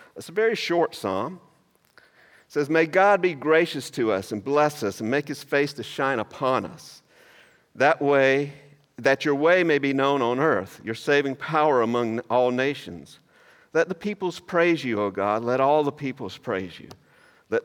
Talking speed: 180 wpm